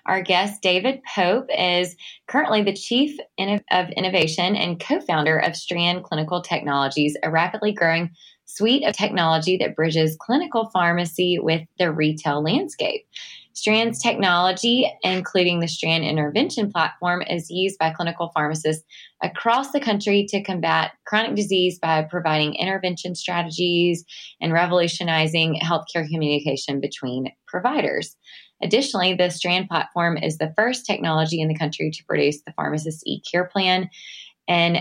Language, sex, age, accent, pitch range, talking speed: English, female, 20-39, American, 155-185 Hz, 135 wpm